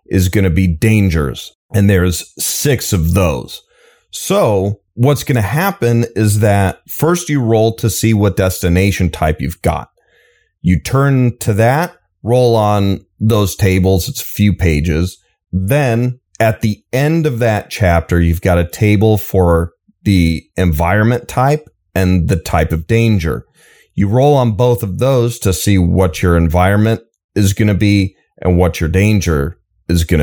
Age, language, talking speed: 30-49, English, 150 wpm